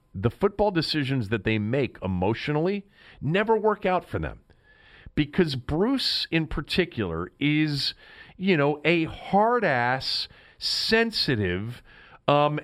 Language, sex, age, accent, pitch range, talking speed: English, male, 50-69, American, 125-195 Hz, 115 wpm